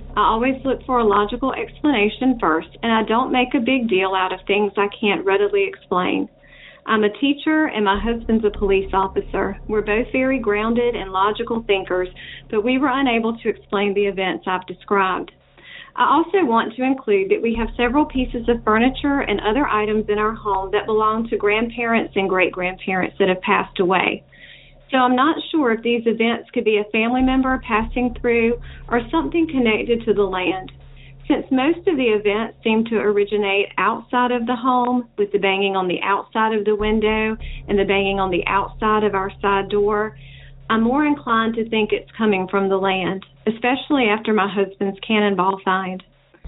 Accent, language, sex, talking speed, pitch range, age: American, English, female, 185 wpm, 200-245 Hz, 40-59